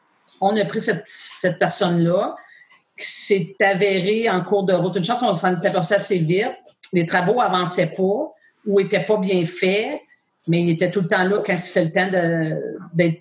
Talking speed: 195 wpm